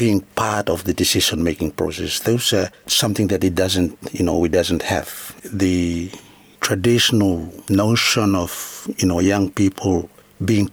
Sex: male